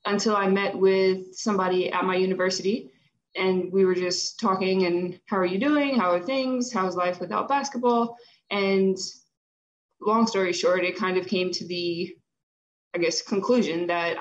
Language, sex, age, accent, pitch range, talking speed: English, female, 20-39, American, 175-215 Hz, 165 wpm